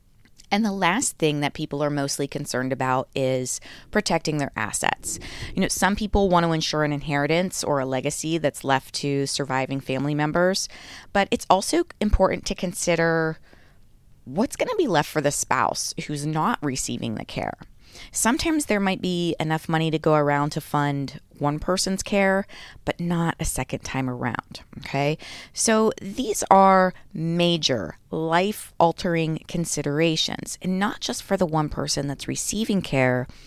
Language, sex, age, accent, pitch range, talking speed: English, female, 20-39, American, 140-180 Hz, 160 wpm